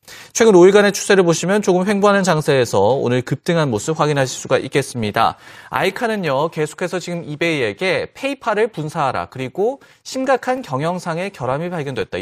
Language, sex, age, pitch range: Korean, male, 30-49, 135-195 Hz